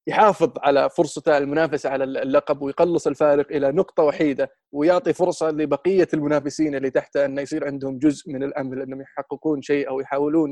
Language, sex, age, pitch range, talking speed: Arabic, male, 20-39, 140-155 Hz, 160 wpm